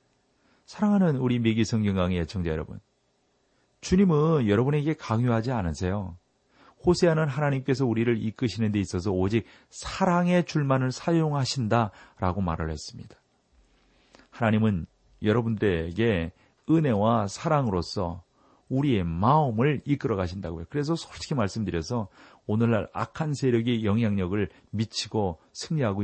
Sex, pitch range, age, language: male, 90-140 Hz, 40-59, Korean